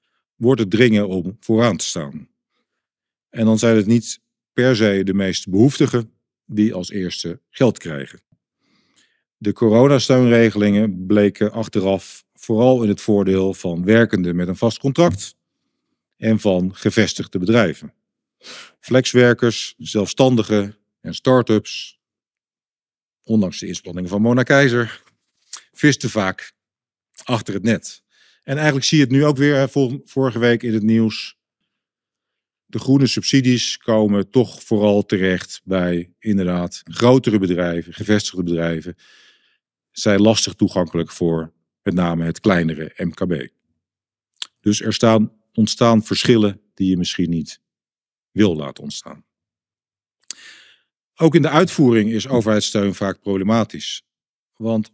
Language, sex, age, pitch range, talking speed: Dutch, male, 50-69, 95-120 Hz, 120 wpm